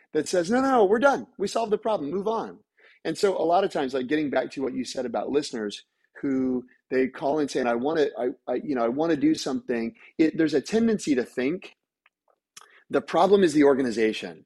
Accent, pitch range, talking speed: American, 125-200 Hz, 235 wpm